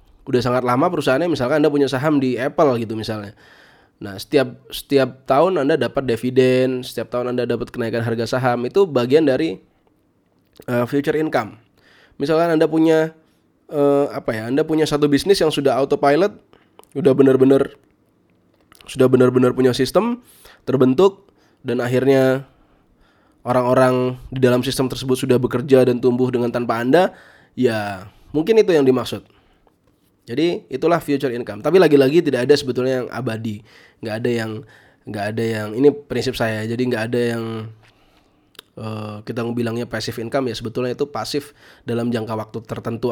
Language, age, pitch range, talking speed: Indonesian, 20-39, 115-140 Hz, 150 wpm